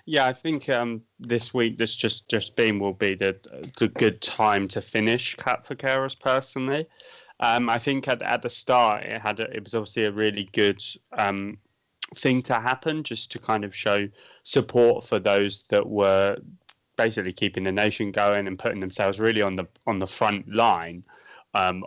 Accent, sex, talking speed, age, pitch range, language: British, male, 185 wpm, 20-39, 100-125 Hz, English